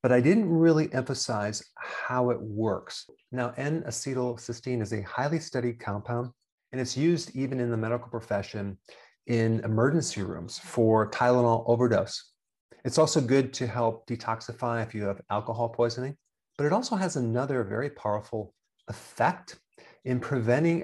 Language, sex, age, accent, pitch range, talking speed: English, male, 40-59, American, 110-130 Hz, 145 wpm